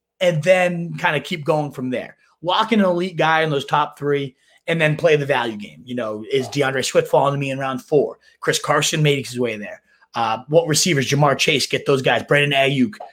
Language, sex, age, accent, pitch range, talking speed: English, male, 30-49, American, 130-175 Hz, 230 wpm